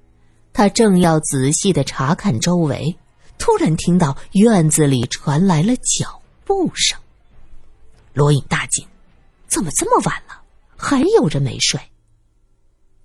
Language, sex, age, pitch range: Chinese, female, 50-69, 130-210 Hz